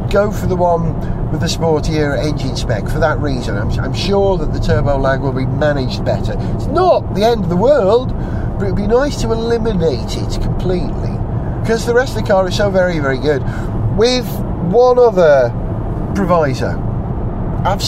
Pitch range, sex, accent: 125-160 Hz, male, British